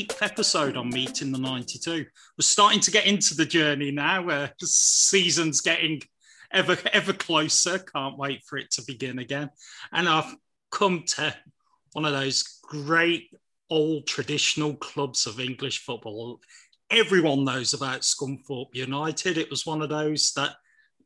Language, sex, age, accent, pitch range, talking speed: English, male, 30-49, British, 135-170 Hz, 155 wpm